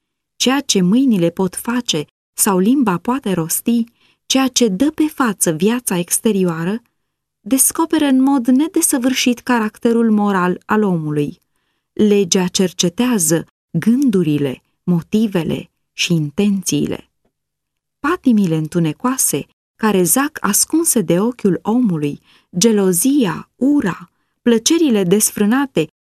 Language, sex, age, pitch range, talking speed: Romanian, female, 20-39, 185-255 Hz, 95 wpm